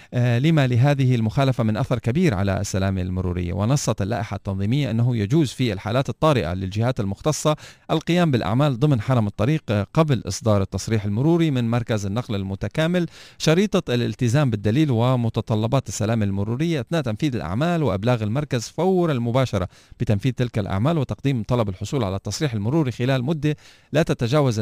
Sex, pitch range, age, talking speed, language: male, 100-140 Hz, 40-59, 140 wpm, Arabic